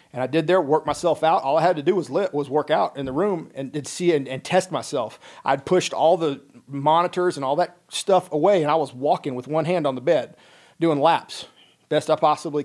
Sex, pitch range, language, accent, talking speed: male, 140-170 Hz, English, American, 245 wpm